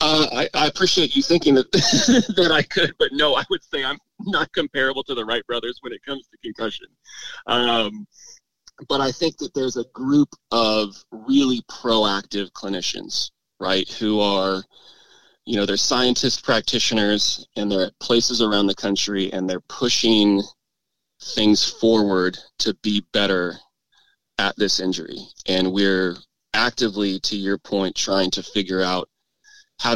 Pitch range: 100-130 Hz